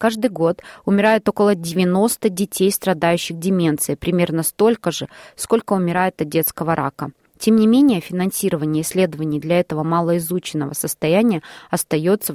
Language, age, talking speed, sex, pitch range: Russian, 20-39, 125 wpm, female, 165-205 Hz